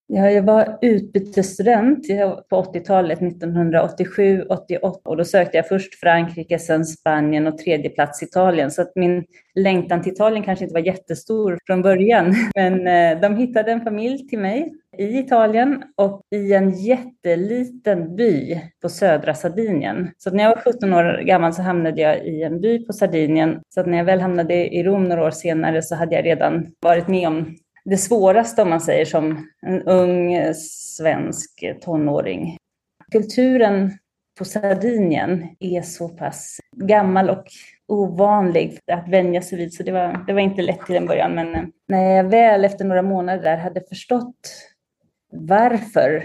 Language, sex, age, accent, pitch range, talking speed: Swedish, female, 30-49, native, 170-200 Hz, 165 wpm